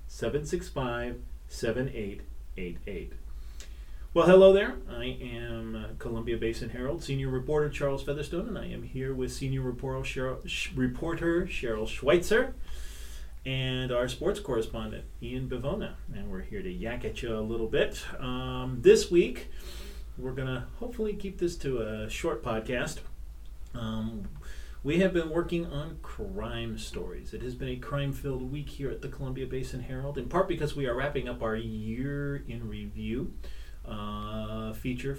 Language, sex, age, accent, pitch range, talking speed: English, male, 30-49, American, 110-135 Hz, 150 wpm